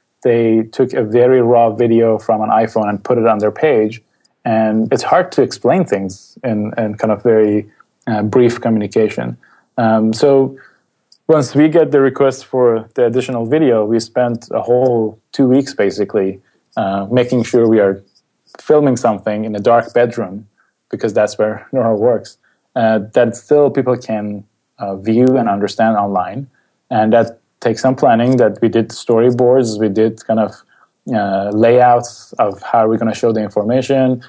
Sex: male